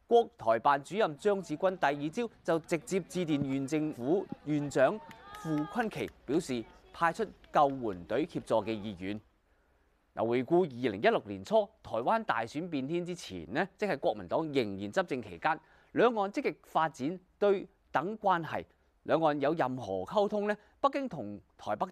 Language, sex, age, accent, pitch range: Chinese, male, 30-49, native, 120-205 Hz